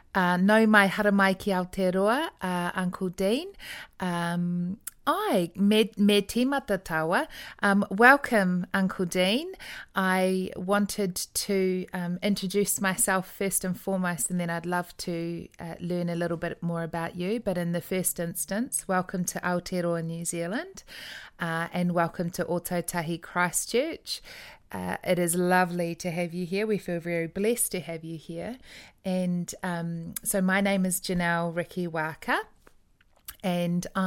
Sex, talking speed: female, 145 wpm